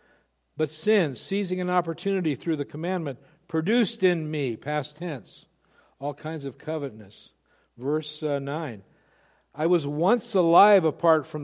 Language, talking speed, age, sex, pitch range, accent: English, 135 wpm, 60-79, male, 120-160 Hz, American